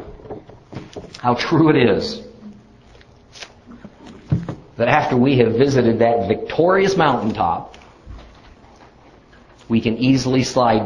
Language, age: English, 50-69